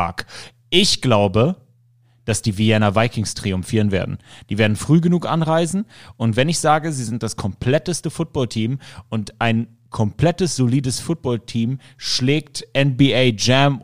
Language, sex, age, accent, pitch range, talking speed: German, male, 30-49, German, 110-135 Hz, 130 wpm